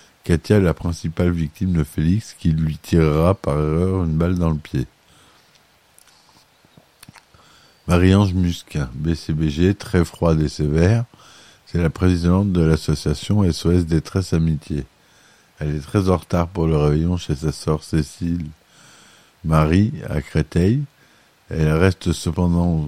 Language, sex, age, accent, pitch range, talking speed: French, male, 50-69, French, 80-95 Hz, 130 wpm